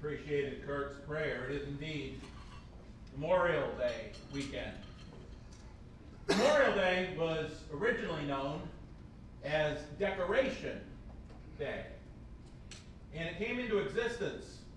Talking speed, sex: 90 wpm, male